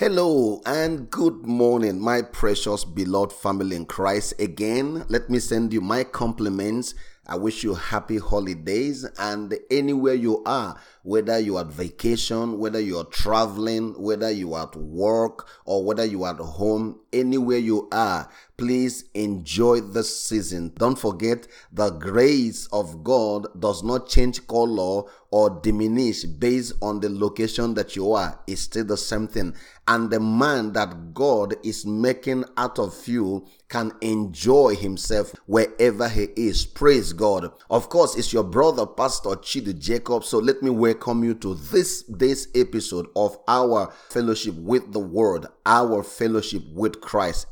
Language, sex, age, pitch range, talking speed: English, male, 30-49, 100-120 Hz, 150 wpm